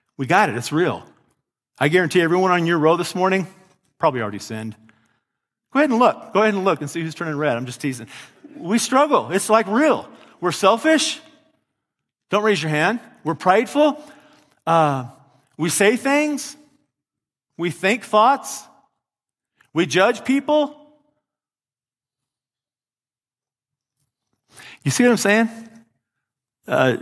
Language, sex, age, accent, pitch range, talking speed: English, male, 40-59, American, 135-210 Hz, 135 wpm